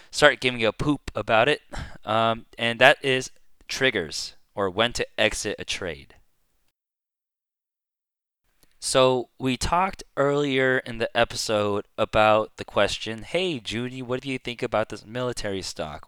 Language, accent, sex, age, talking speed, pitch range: English, American, male, 20-39, 140 wpm, 100-125 Hz